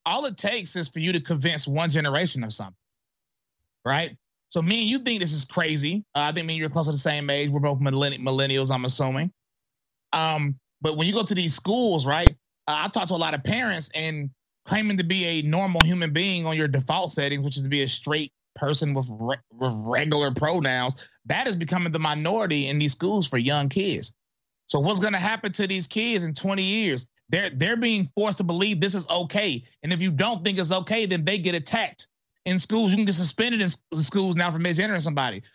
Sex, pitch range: male, 145-200 Hz